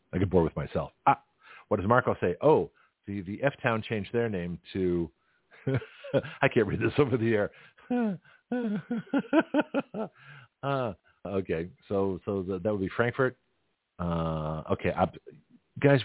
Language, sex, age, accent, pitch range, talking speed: English, male, 50-69, American, 90-130 Hz, 140 wpm